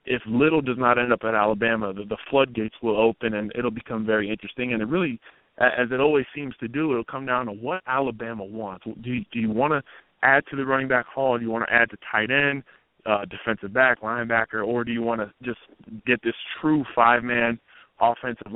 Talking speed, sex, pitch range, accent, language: 225 wpm, male, 110-125 Hz, American, English